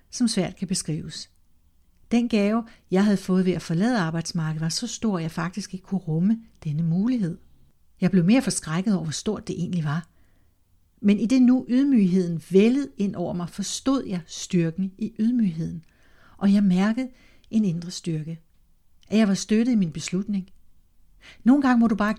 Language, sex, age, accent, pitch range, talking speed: Danish, female, 60-79, native, 170-215 Hz, 180 wpm